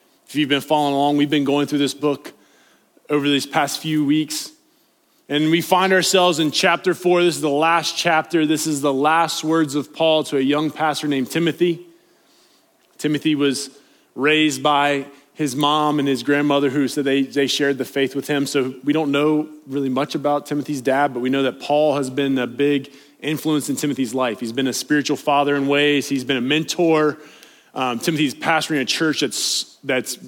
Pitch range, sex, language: 135-160 Hz, male, English